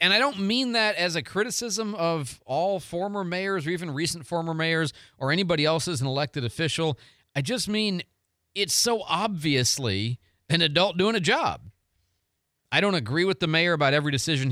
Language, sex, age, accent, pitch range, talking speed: English, male, 40-59, American, 115-165 Hz, 180 wpm